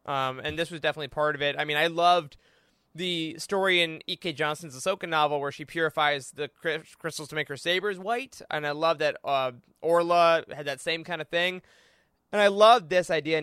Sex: male